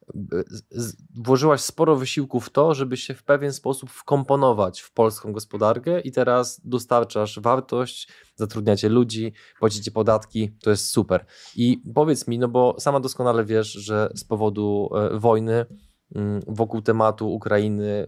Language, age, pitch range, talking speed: Polish, 20-39, 105-130 Hz, 135 wpm